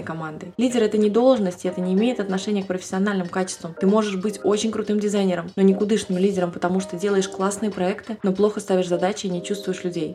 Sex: female